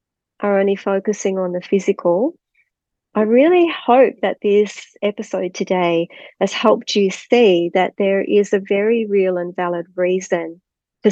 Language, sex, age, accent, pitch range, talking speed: English, female, 40-59, Australian, 180-215 Hz, 140 wpm